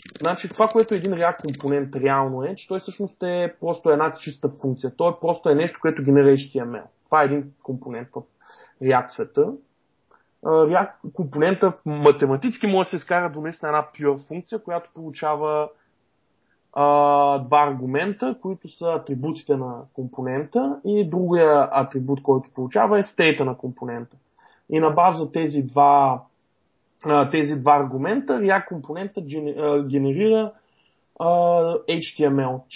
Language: Bulgarian